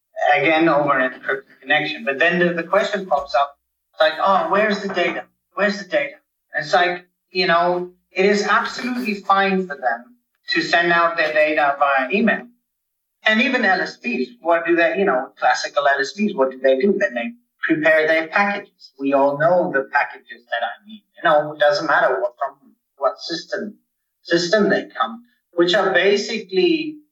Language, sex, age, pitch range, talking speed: English, male, 30-49, 145-210 Hz, 175 wpm